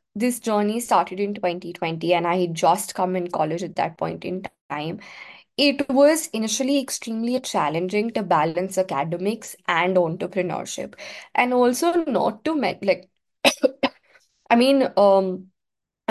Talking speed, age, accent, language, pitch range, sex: 135 wpm, 20-39, Indian, English, 195-250 Hz, female